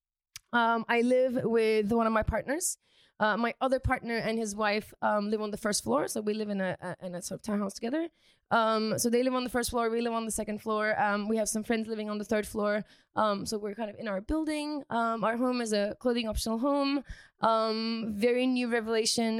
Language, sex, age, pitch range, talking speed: English, female, 20-39, 210-245 Hz, 230 wpm